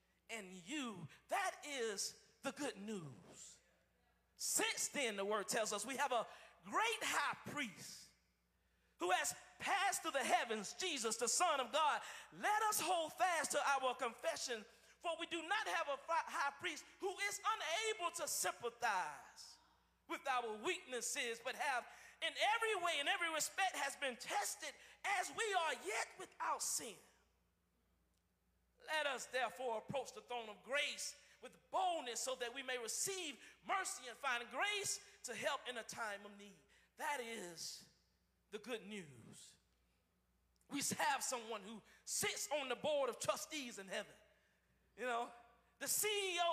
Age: 40-59